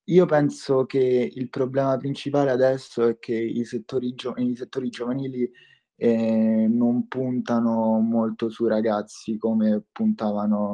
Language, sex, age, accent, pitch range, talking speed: Italian, male, 20-39, native, 95-115 Hz, 130 wpm